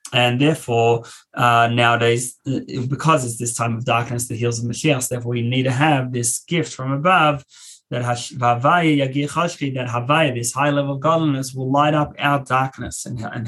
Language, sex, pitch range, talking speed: English, male, 115-140 Hz, 175 wpm